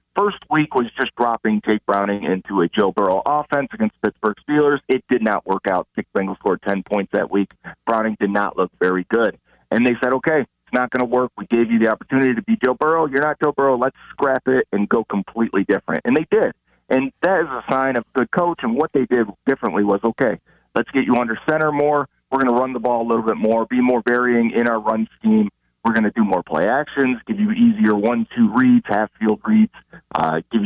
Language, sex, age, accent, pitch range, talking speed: English, male, 40-59, American, 105-135 Hz, 235 wpm